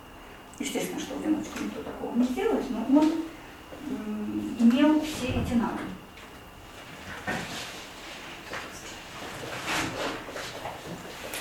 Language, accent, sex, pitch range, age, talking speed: Russian, native, female, 230-285 Hz, 40-59, 60 wpm